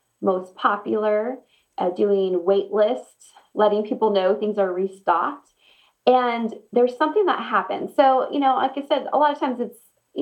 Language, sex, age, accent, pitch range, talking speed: English, female, 20-39, American, 195-255 Hz, 175 wpm